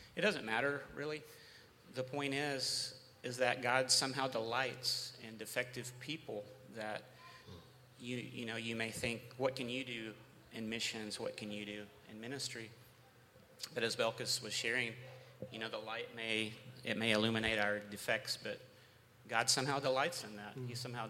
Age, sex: 30-49, male